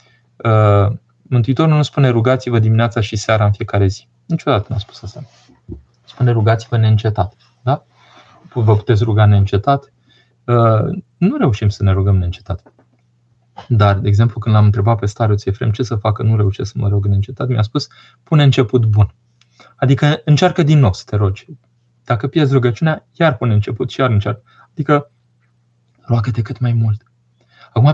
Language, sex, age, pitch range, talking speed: Romanian, male, 20-39, 105-125 Hz, 165 wpm